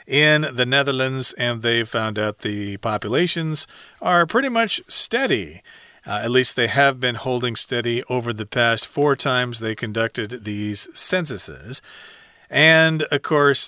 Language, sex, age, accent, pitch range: Chinese, male, 40-59, American, 115-155 Hz